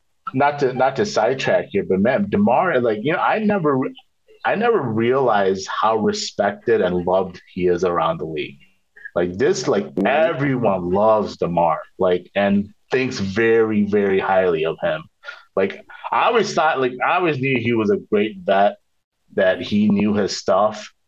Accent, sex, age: American, male, 30-49